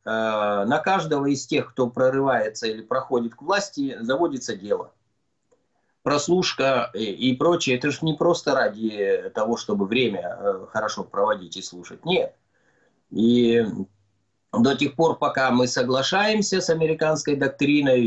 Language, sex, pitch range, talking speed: Russian, male, 120-165 Hz, 125 wpm